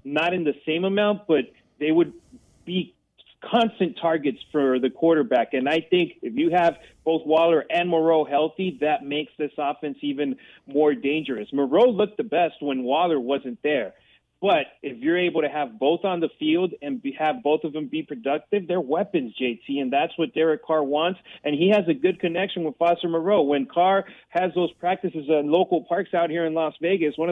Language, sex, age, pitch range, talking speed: English, male, 30-49, 145-180 Hz, 195 wpm